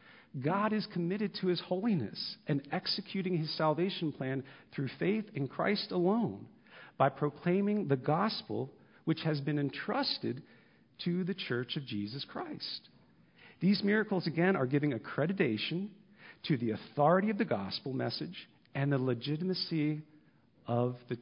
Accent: American